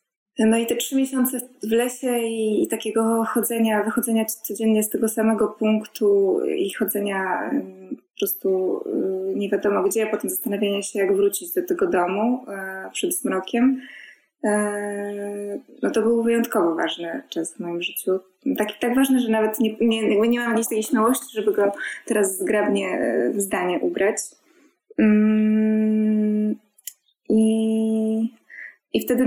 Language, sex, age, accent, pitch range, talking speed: Polish, female, 20-39, native, 205-240 Hz, 140 wpm